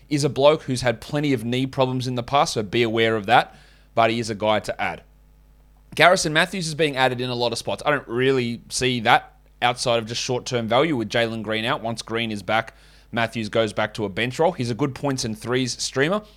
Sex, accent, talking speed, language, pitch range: male, Australian, 240 wpm, English, 115-145 Hz